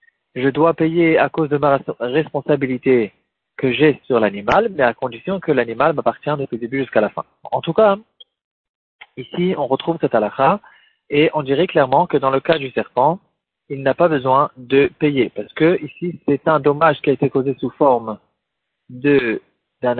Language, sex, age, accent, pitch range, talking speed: French, male, 40-59, French, 130-165 Hz, 185 wpm